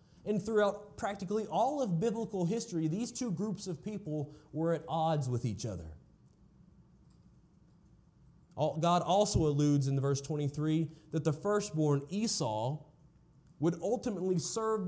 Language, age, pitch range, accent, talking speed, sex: English, 30-49, 140-195 Hz, American, 125 wpm, male